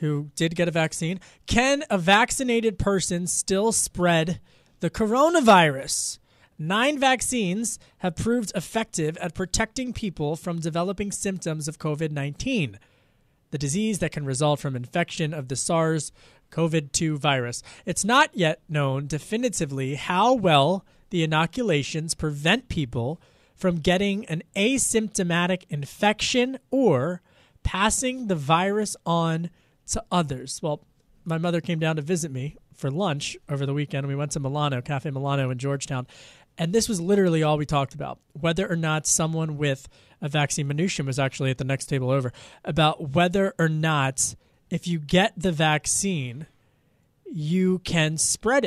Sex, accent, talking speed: male, American, 145 wpm